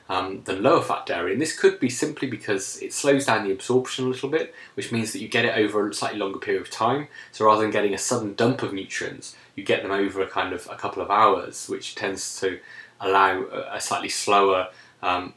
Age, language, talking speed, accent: 20-39, English, 230 wpm, British